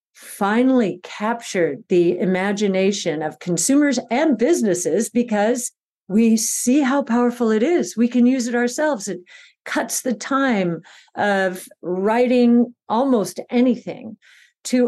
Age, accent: 50-69, American